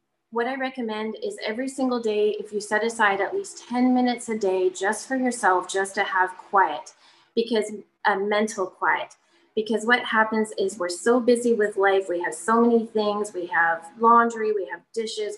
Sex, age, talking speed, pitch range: female, 30-49, 185 wpm, 195-235 Hz